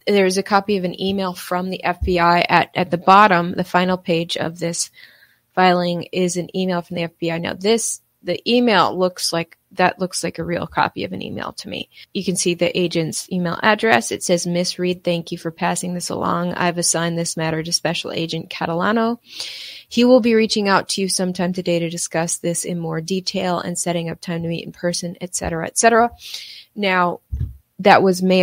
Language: English